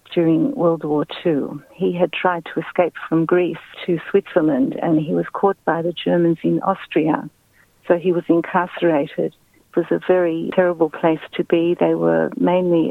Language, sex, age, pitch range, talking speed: Hebrew, female, 60-79, 160-180 Hz, 170 wpm